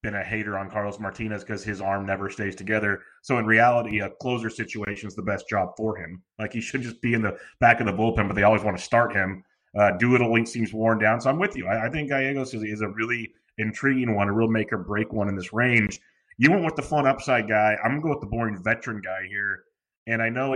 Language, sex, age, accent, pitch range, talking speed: English, male, 30-49, American, 105-120 Hz, 270 wpm